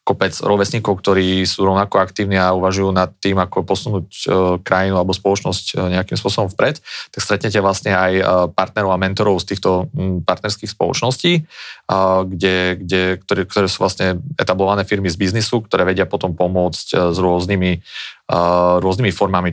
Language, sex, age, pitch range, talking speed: Slovak, male, 30-49, 90-100 Hz, 165 wpm